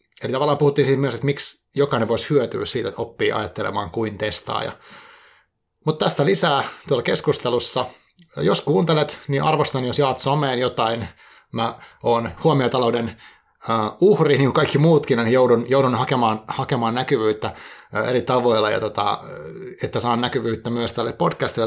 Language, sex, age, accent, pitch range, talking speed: Finnish, male, 30-49, native, 115-145 Hz, 145 wpm